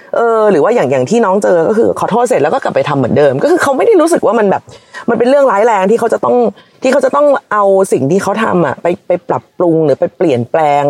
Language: Thai